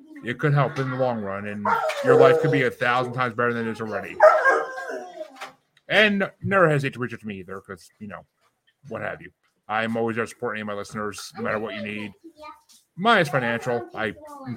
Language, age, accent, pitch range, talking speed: English, 30-49, American, 120-165 Hz, 220 wpm